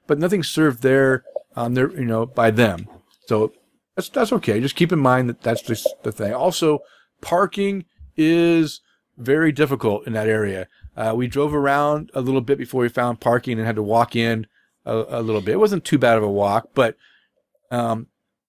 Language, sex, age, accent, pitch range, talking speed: English, male, 40-59, American, 115-150 Hz, 200 wpm